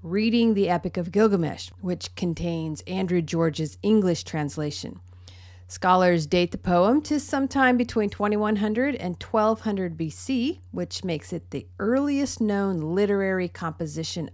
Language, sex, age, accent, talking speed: English, female, 40-59, American, 125 wpm